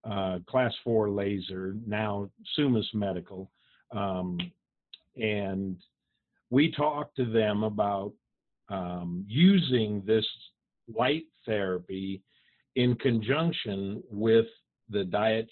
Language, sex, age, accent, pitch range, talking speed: English, male, 50-69, American, 95-125 Hz, 95 wpm